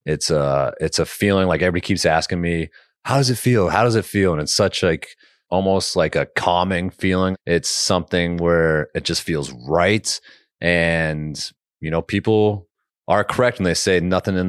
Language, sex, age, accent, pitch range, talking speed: English, male, 30-49, American, 85-105 Hz, 185 wpm